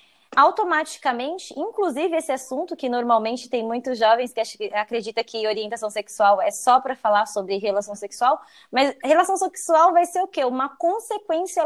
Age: 20-39